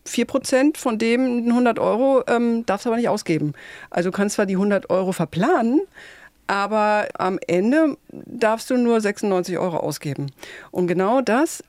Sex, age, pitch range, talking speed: female, 50-69, 175-225 Hz, 155 wpm